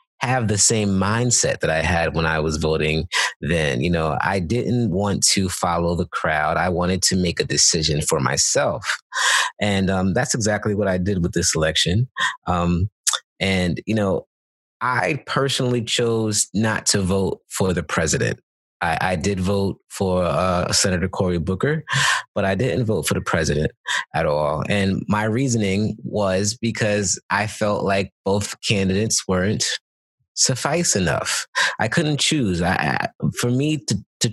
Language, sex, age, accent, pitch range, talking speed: English, male, 30-49, American, 90-115 Hz, 160 wpm